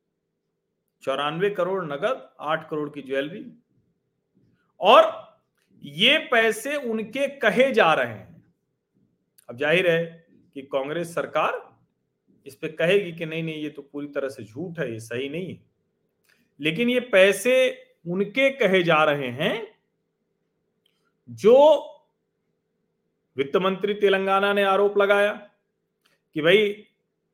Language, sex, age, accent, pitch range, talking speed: Hindi, male, 40-59, native, 160-215 Hz, 120 wpm